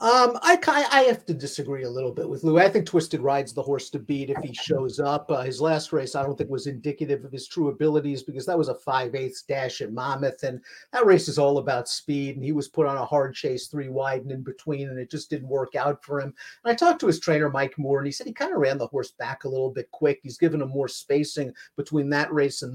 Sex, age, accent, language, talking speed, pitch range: male, 50-69, American, English, 275 wpm, 135-160 Hz